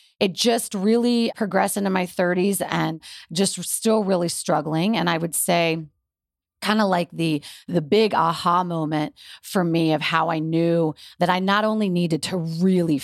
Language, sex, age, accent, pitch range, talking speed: English, female, 30-49, American, 150-185 Hz, 170 wpm